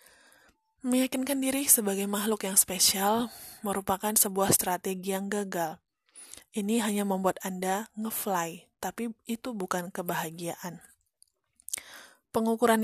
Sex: female